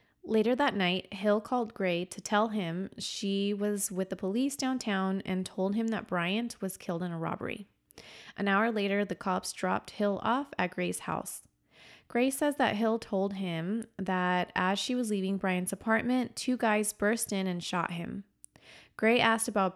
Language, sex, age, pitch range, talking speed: English, female, 20-39, 185-225 Hz, 180 wpm